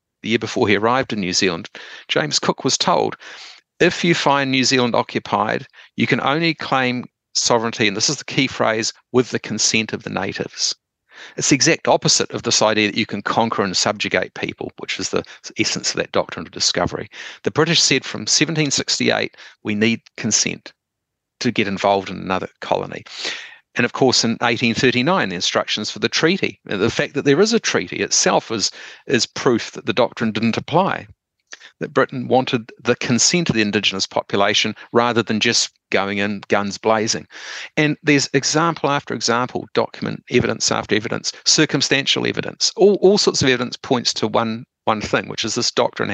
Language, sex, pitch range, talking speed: English, male, 110-135 Hz, 180 wpm